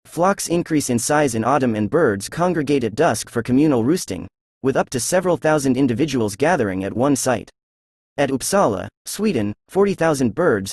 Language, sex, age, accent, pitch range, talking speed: English, male, 30-49, American, 110-160 Hz, 160 wpm